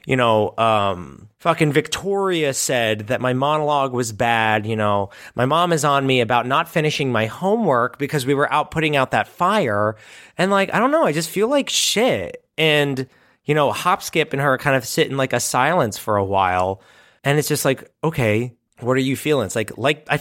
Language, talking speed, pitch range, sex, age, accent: English, 210 wpm, 110-145 Hz, male, 30-49, American